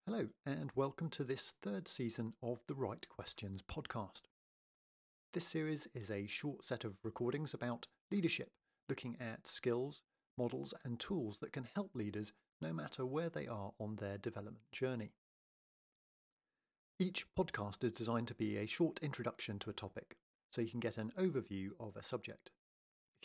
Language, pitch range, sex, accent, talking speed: English, 105-145 Hz, male, British, 165 wpm